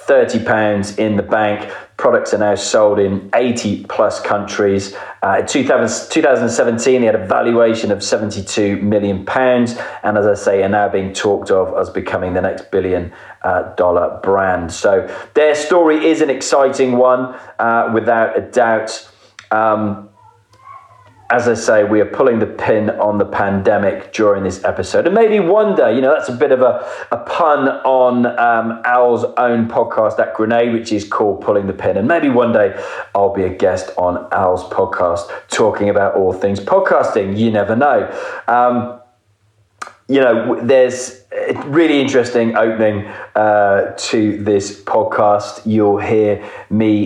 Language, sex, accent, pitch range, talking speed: English, male, British, 100-120 Hz, 160 wpm